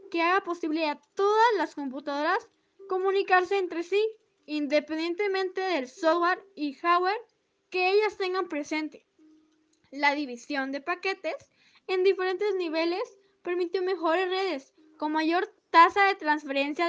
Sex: female